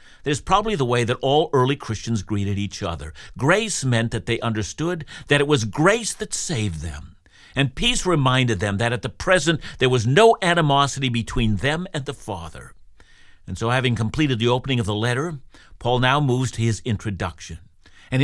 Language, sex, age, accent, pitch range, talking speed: English, male, 60-79, American, 105-160 Hz, 190 wpm